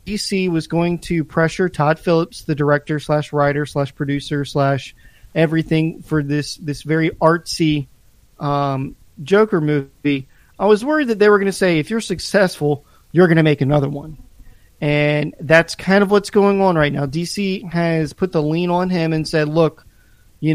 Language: English